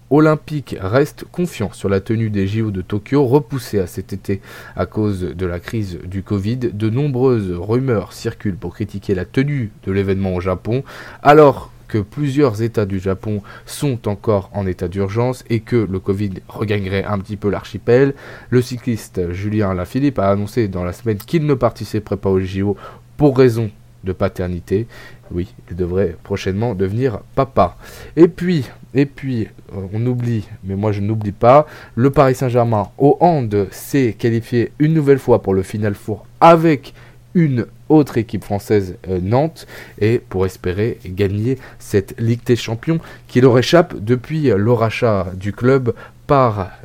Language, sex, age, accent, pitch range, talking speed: French, male, 20-39, French, 100-125 Hz, 160 wpm